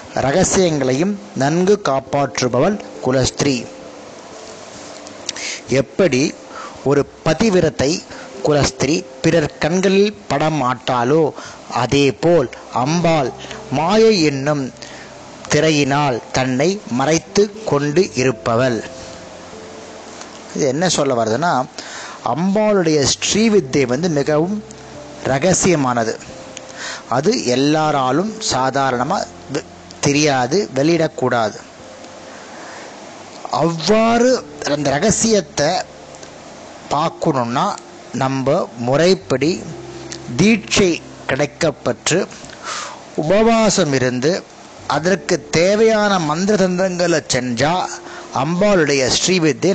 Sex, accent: male, native